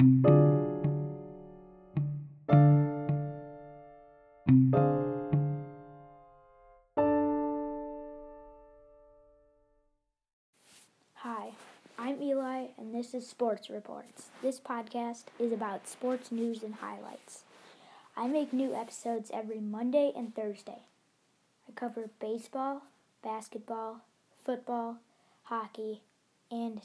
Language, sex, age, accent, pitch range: English, female, 20-39, American, 145-240 Hz